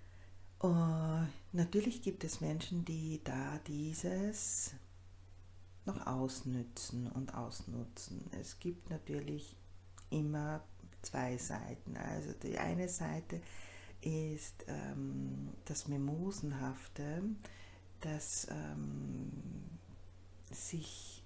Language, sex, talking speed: German, female, 80 wpm